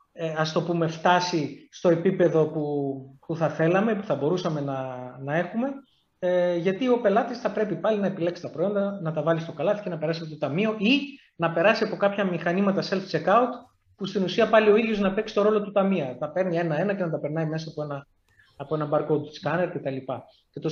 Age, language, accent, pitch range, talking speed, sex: 30-49, Greek, native, 155-210 Hz, 215 wpm, male